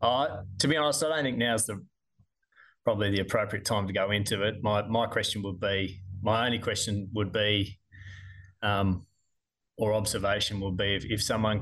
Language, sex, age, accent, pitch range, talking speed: English, male, 20-39, Australian, 100-120 Hz, 180 wpm